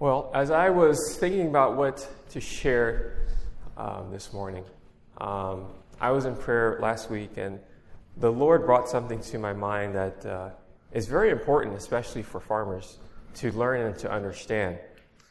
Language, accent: English, American